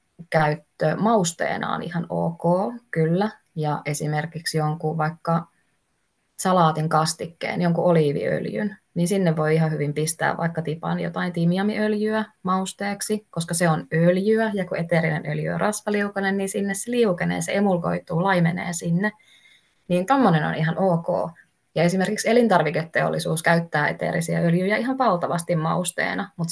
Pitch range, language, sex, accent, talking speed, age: 160-190 Hz, Finnish, female, native, 130 wpm, 20-39